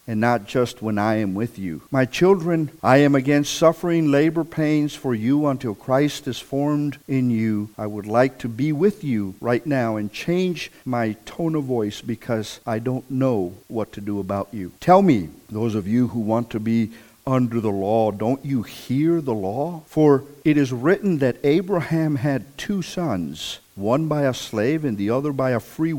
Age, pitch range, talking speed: 50-69, 115-150 Hz, 195 wpm